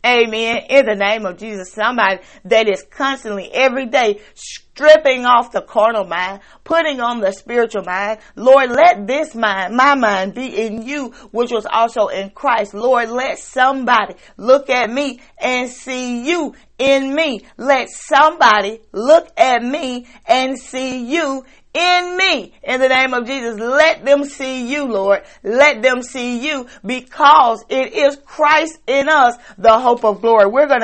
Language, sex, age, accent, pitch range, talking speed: English, female, 40-59, American, 200-270 Hz, 160 wpm